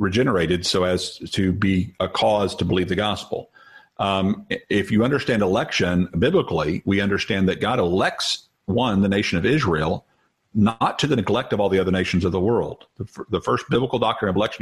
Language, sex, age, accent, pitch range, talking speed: English, male, 50-69, American, 95-115 Hz, 190 wpm